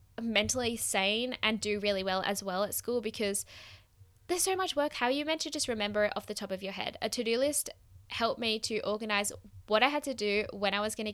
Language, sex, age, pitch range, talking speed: English, female, 10-29, 195-230 Hz, 250 wpm